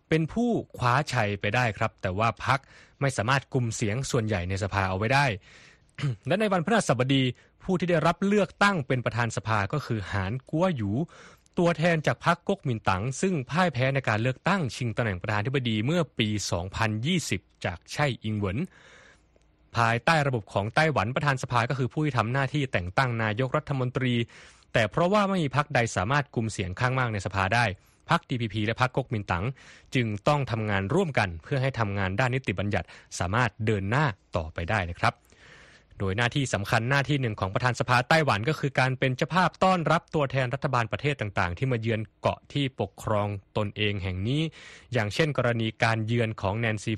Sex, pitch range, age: male, 105-145 Hz, 20-39